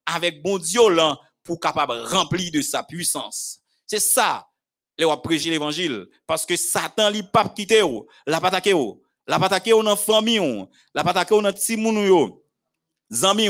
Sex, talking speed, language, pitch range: male, 185 wpm, French, 170-225 Hz